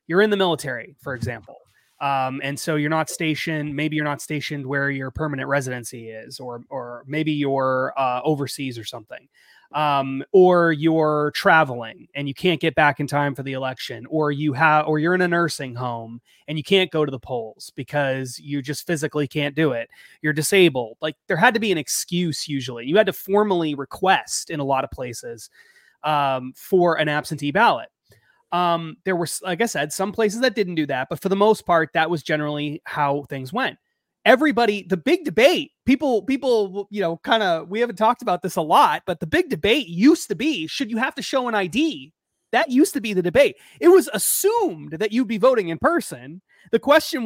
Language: English